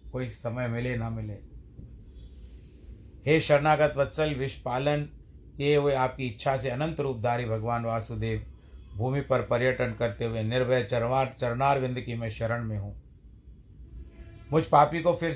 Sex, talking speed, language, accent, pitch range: male, 135 wpm, Hindi, native, 110-145 Hz